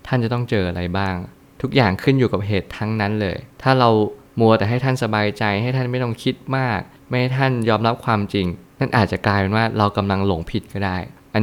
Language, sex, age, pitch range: Thai, male, 20-39, 100-125 Hz